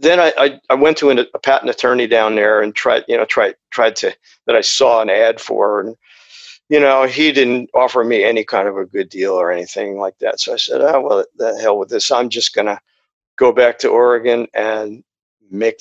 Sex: male